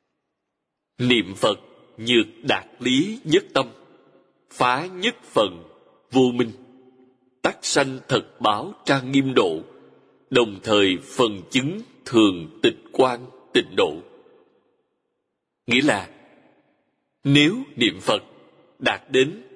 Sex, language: male, Vietnamese